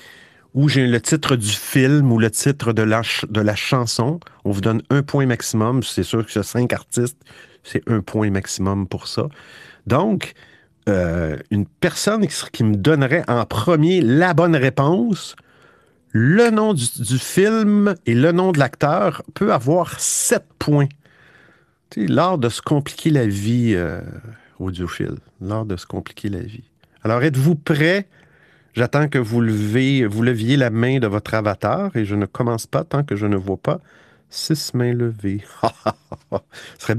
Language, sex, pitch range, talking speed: French, male, 105-150 Hz, 165 wpm